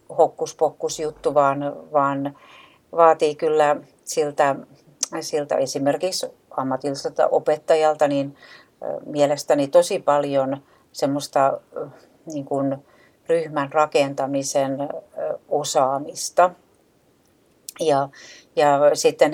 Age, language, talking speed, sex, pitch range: 60-79, English, 75 wpm, female, 135-155 Hz